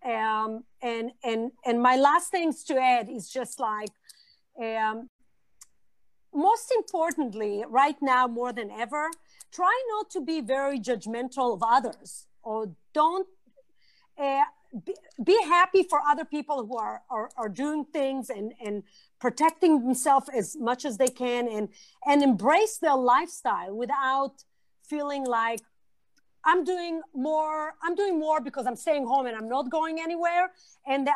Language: Hebrew